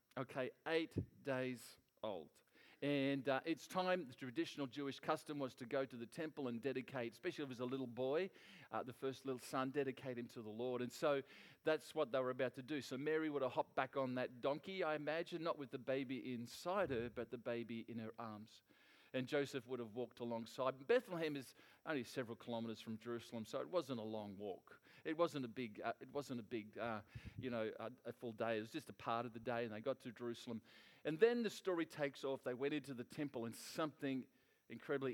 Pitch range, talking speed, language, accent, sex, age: 120-145 Hz, 225 wpm, English, Australian, male, 40-59